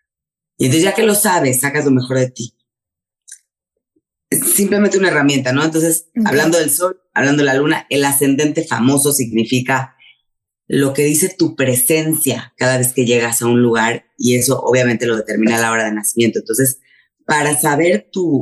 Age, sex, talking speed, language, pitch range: 30-49, female, 175 wpm, Spanish, 125-160 Hz